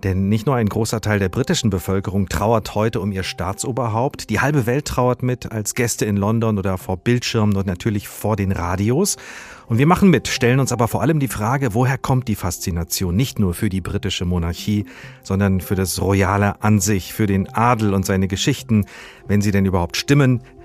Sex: male